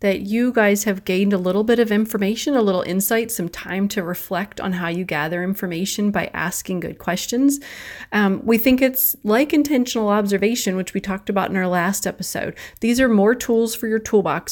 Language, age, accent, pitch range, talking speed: English, 30-49, American, 175-215 Hz, 200 wpm